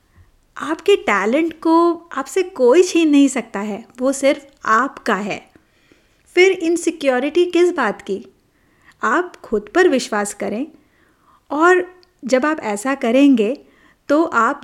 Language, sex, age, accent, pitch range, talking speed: Hindi, female, 50-69, native, 225-310 Hz, 125 wpm